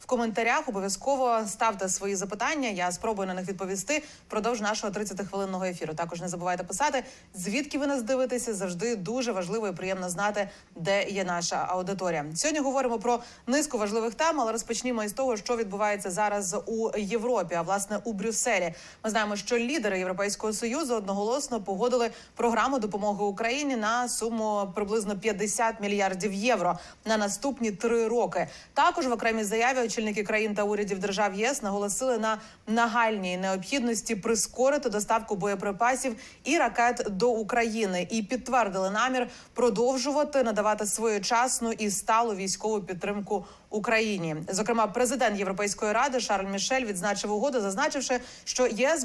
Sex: female